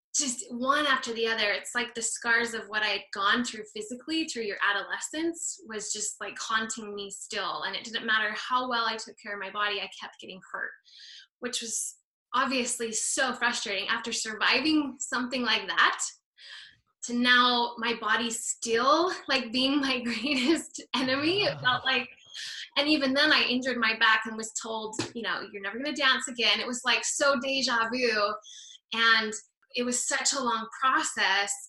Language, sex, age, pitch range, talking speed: English, female, 10-29, 215-260 Hz, 180 wpm